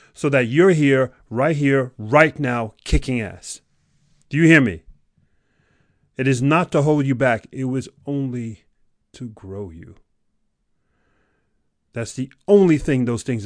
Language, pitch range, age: English, 120-160 Hz, 30-49